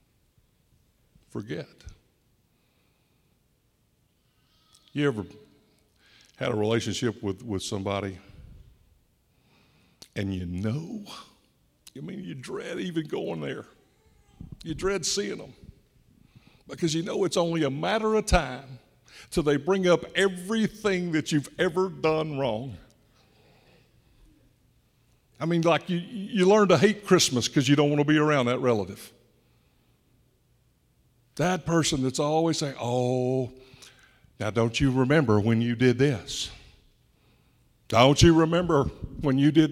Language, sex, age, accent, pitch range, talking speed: English, male, 60-79, American, 125-175 Hz, 120 wpm